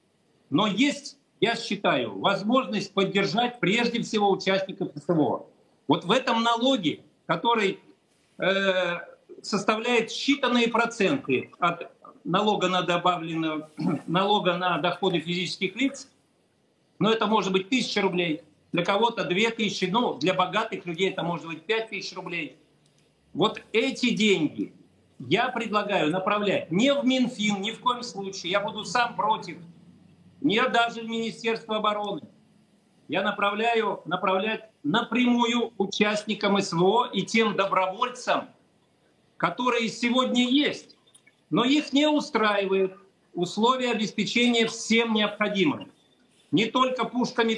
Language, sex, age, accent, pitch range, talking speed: Russian, male, 50-69, native, 190-235 Hz, 115 wpm